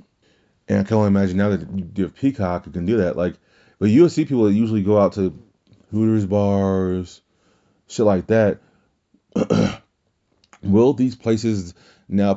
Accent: American